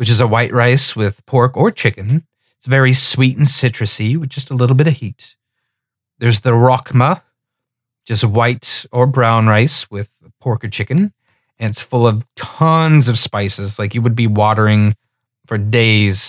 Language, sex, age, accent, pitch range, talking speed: English, male, 30-49, American, 110-130 Hz, 175 wpm